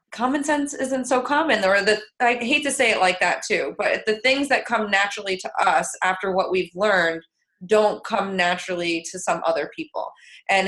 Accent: American